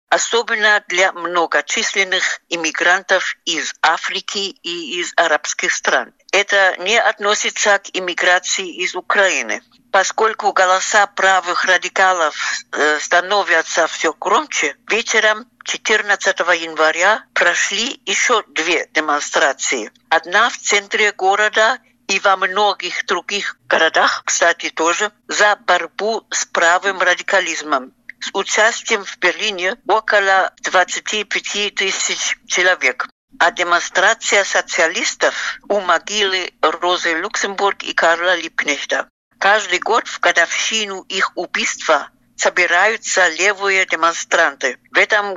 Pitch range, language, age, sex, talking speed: 175-210 Hz, Russian, 60-79, female, 100 wpm